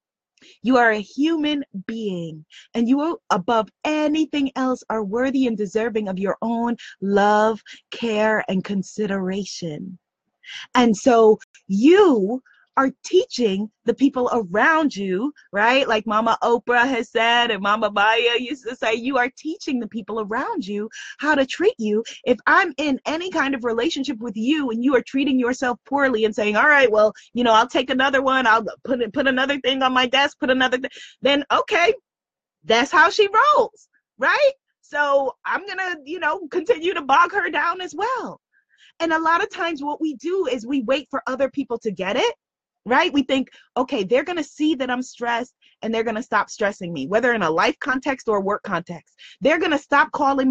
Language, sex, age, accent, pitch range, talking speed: English, female, 20-39, American, 215-280 Hz, 185 wpm